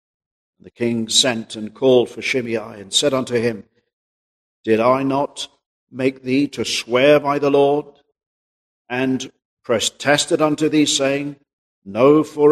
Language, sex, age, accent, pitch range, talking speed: English, male, 50-69, British, 120-140 Hz, 135 wpm